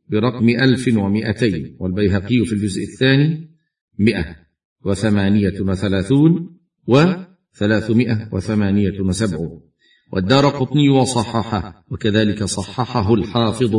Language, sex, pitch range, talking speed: Arabic, male, 100-125 Hz, 70 wpm